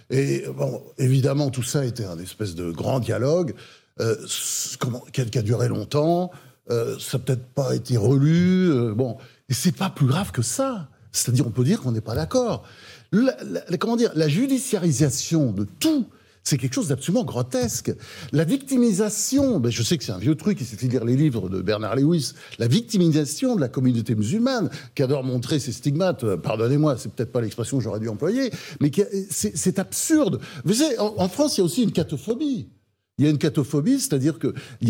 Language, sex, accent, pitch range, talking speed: French, male, French, 125-185 Hz, 200 wpm